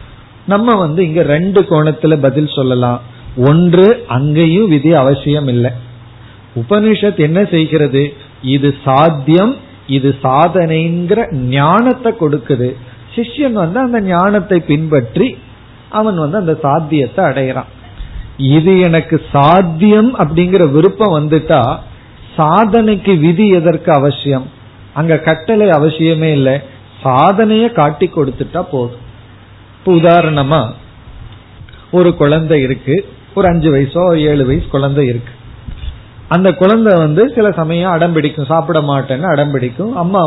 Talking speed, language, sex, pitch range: 105 wpm, Tamil, male, 130-180 Hz